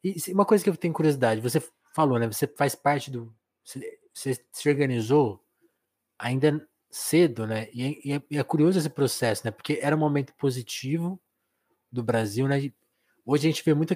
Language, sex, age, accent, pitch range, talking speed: Portuguese, male, 20-39, Brazilian, 125-160 Hz, 175 wpm